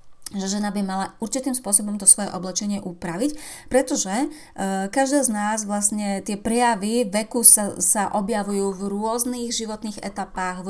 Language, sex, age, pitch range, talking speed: Slovak, female, 30-49, 195-230 Hz, 150 wpm